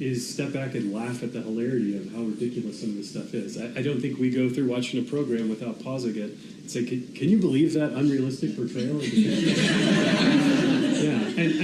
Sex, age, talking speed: male, 30-49, 210 wpm